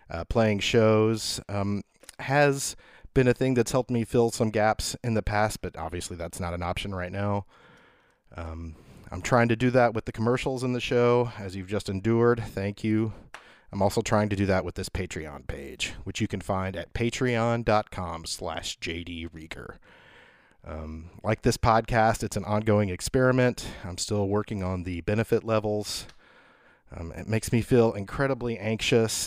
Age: 30-49